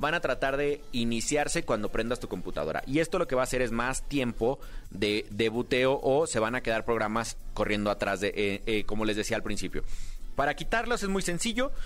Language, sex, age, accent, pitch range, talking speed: Spanish, male, 30-49, Mexican, 115-160 Hz, 215 wpm